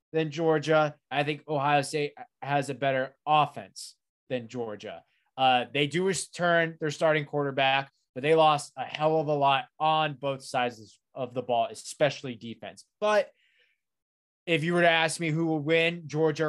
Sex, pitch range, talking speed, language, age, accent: male, 130-155 Hz, 165 wpm, English, 20-39, American